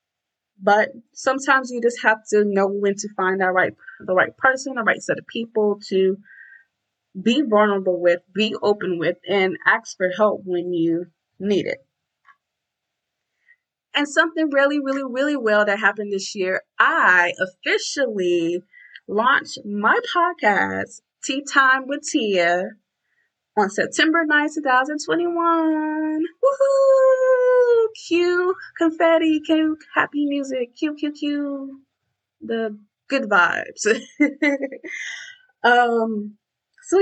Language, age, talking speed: English, 20-39, 115 wpm